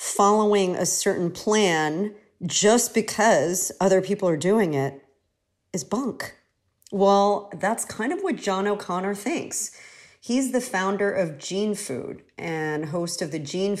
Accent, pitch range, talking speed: American, 185-250 Hz, 140 wpm